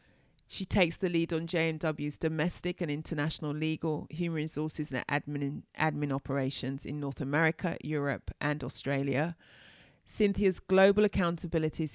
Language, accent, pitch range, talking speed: English, British, 150-175 Hz, 125 wpm